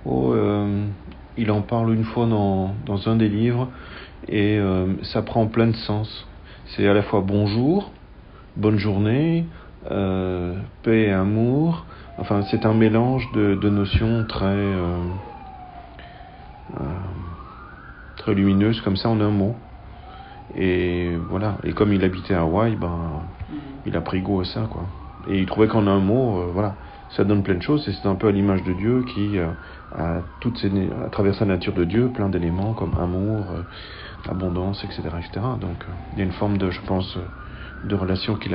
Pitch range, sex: 90-110 Hz, male